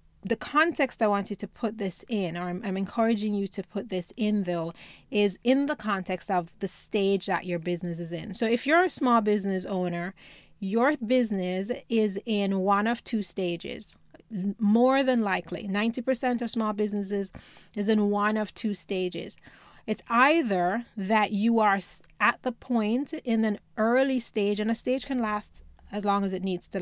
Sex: female